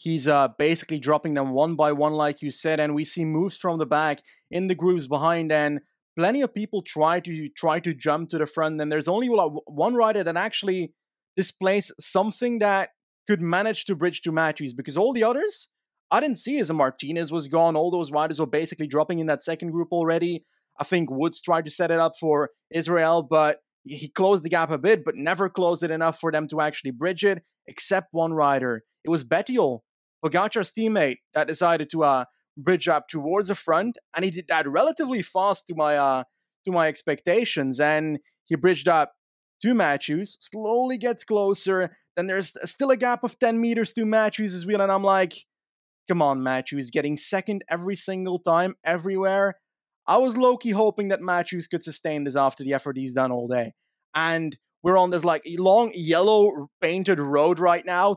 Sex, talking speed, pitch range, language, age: male, 195 wpm, 155-195 Hz, English, 20-39